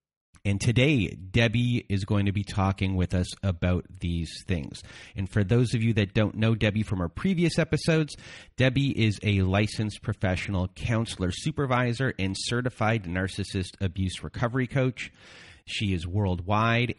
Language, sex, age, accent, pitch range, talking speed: English, male, 30-49, American, 90-110 Hz, 150 wpm